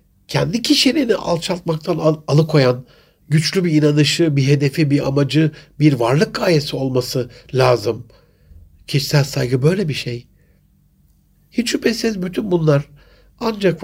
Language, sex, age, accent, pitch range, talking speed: Turkish, male, 60-79, native, 135-180 Hz, 115 wpm